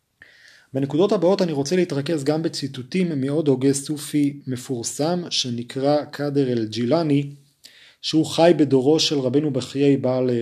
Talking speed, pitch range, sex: 120 wpm, 125-165 Hz, male